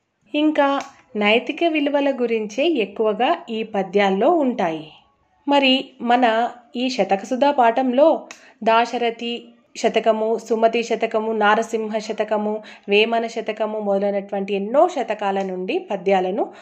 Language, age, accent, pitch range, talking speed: Telugu, 30-49, native, 220-335 Hz, 90 wpm